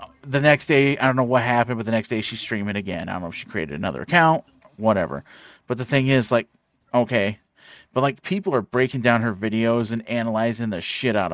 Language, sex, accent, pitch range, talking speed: English, male, American, 110-130 Hz, 230 wpm